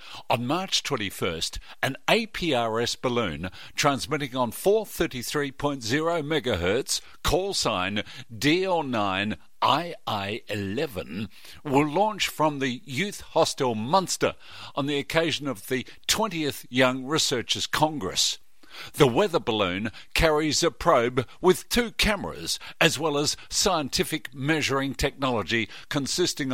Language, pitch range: English, 120-160 Hz